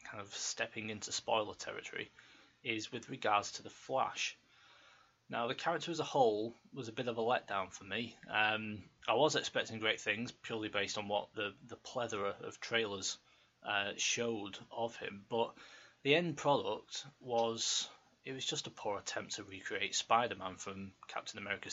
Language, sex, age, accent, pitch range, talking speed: English, male, 20-39, British, 110-135 Hz, 170 wpm